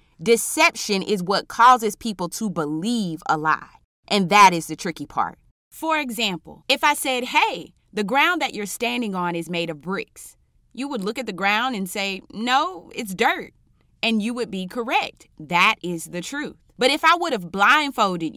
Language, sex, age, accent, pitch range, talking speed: English, female, 30-49, American, 175-255 Hz, 185 wpm